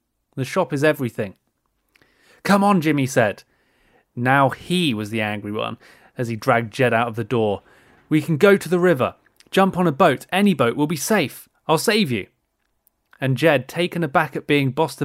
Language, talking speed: English, 185 wpm